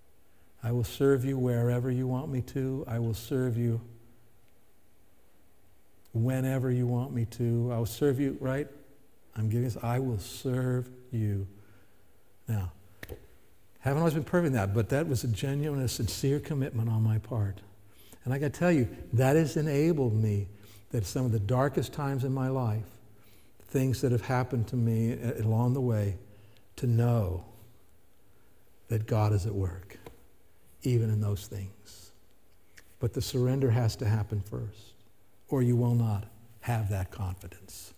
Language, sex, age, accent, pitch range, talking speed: English, male, 60-79, American, 100-140 Hz, 160 wpm